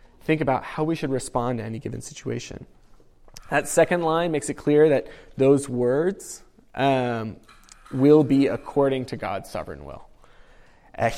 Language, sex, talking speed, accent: English, male, 150 wpm, American